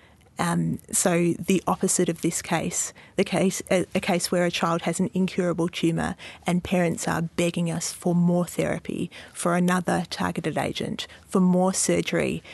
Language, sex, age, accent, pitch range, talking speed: English, female, 30-49, Australian, 170-185 Hz, 165 wpm